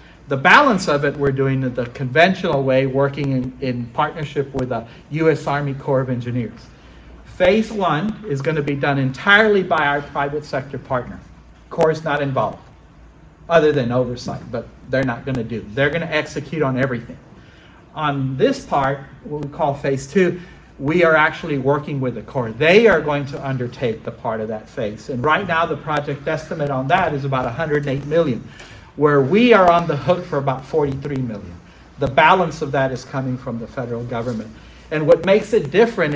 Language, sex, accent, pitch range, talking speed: English, male, American, 130-160 Hz, 190 wpm